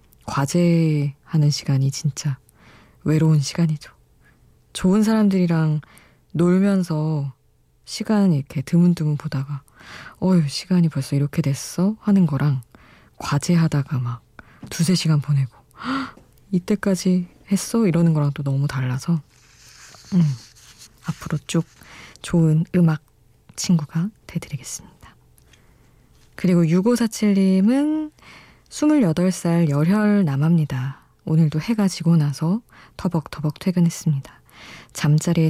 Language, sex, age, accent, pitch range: Korean, female, 20-39, native, 145-180 Hz